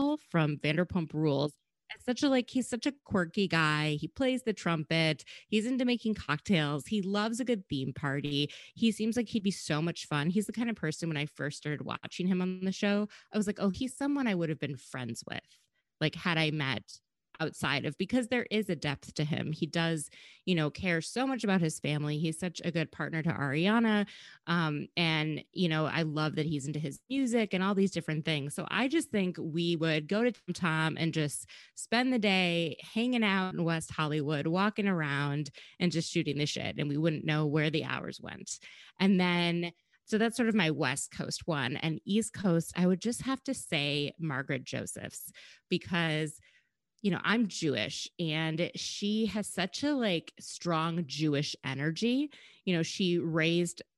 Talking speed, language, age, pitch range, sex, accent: 200 wpm, English, 20-39, 155-205 Hz, female, American